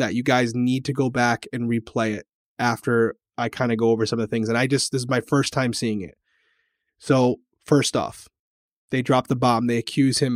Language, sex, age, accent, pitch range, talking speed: English, male, 20-39, American, 120-140 Hz, 230 wpm